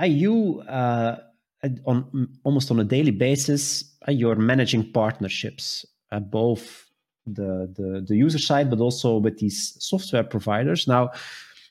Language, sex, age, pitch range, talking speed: English, male, 30-49, 120-150 Hz, 130 wpm